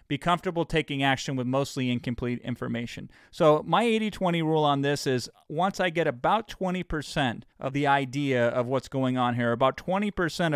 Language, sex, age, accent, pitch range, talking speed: English, male, 30-49, American, 130-175 Hz, 170 wpm